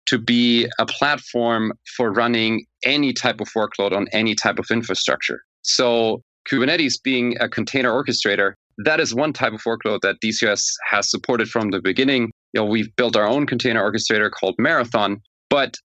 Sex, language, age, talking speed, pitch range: male, English, 30-49, 170 wpm, 110-125 Hz